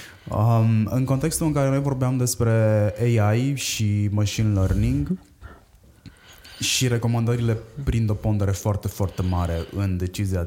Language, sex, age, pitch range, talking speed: Romanian, male, 20-39, 90-115 Hz, 125 wpm